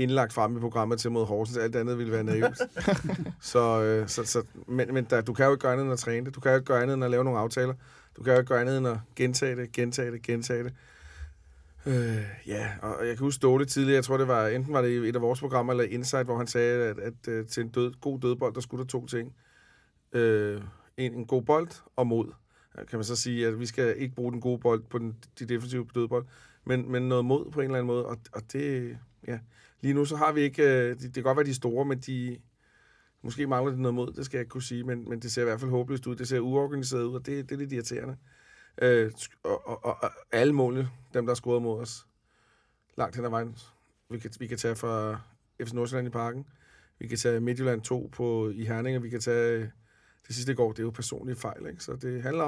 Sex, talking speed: male, 255 wpm